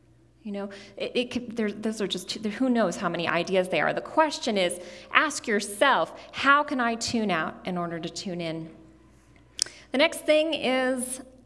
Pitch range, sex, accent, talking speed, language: 170-245 Hz, female, American, 160 wpm, English